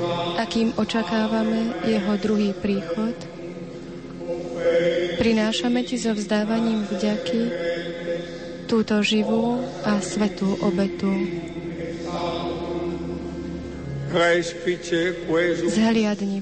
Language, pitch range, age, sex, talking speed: Slovak, 170-215 Hz, 30-49, female, 60 wpm